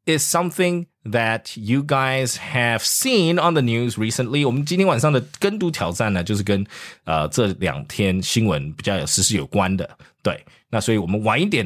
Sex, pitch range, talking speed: male, 100-145 Hz, 80 wpm